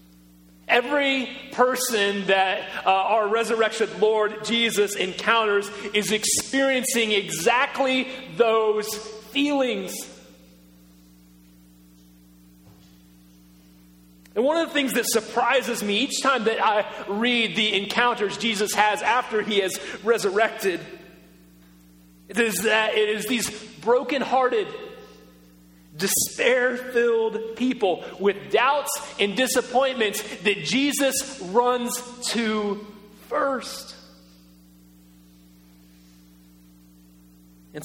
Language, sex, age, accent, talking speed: English, male, 30-49, American, 85 wpm